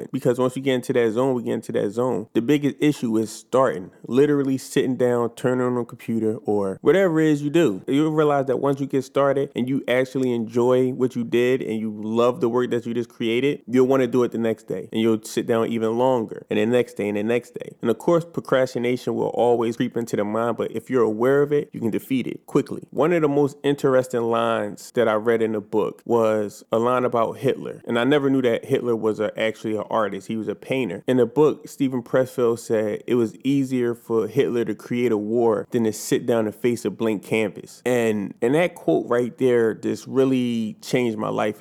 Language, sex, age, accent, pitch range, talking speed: English, male, 30-49, American, 115-135 Hz, 235 wpm